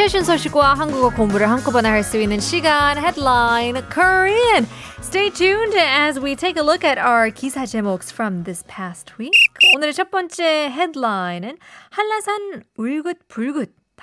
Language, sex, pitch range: Korean, female, 205-305 Hz